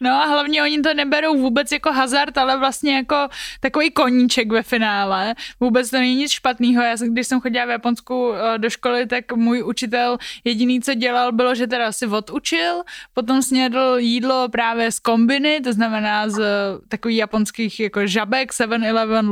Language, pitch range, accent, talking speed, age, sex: Czech, 225-265 Hz, native, 170 wpm, 20-39, female